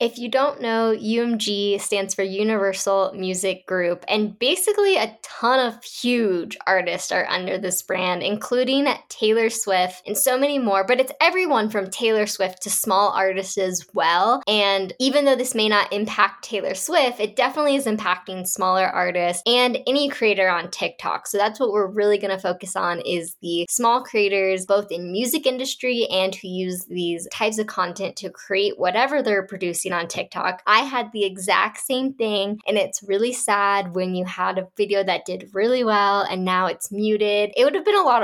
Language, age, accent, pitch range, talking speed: English, 10-29, American, 190-250 Hz, 185 wpm